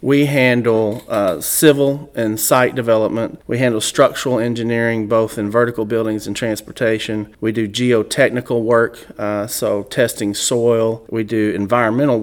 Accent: American